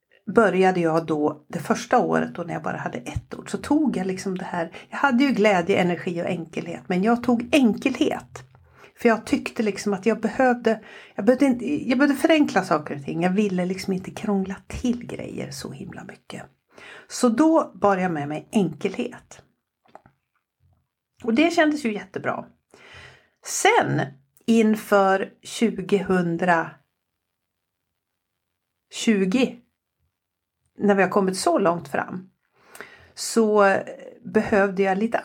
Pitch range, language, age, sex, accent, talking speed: 175-240 Hz, Swedish, 60-79, female, native, 140 wpm